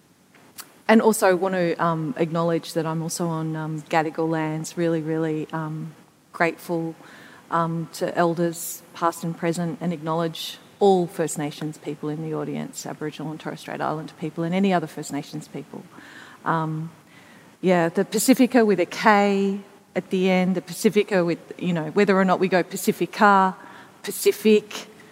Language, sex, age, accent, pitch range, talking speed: English, female, 40-59, Australian, 165-195 Hz, 160 wpm